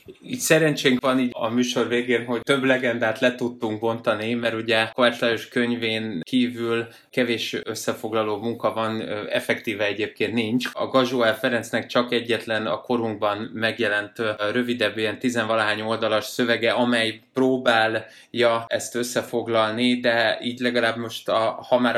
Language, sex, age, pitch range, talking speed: Hungarian, male, 20-39, 115-130 Hz, 130 wpm